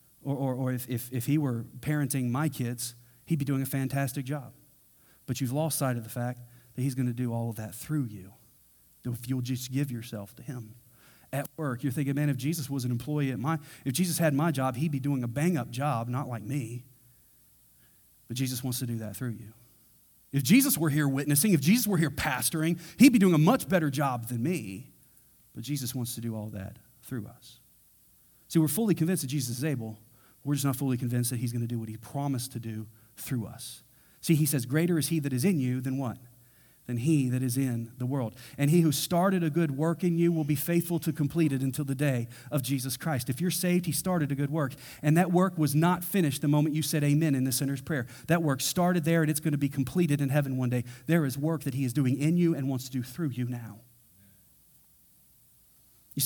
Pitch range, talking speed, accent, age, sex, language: 125-155 Hz, 235 wpm, American, 40-59, male, English